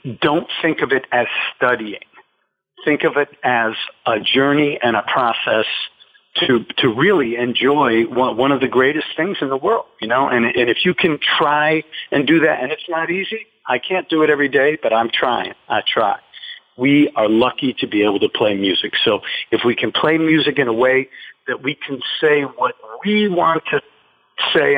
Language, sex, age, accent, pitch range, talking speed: English, male, 50-69, American, 125-155 Hz, 195 wpm